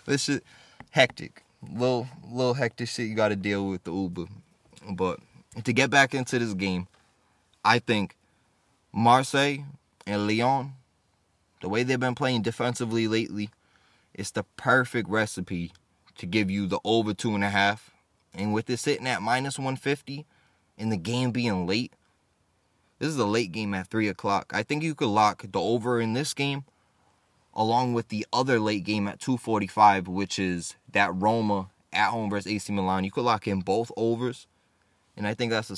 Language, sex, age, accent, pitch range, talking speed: English, male, 20-39, American, 100-120 Hz, 175 wpm